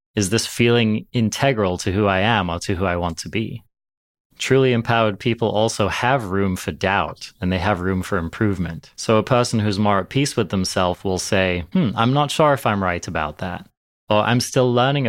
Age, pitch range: 30-49, 95-110 Hz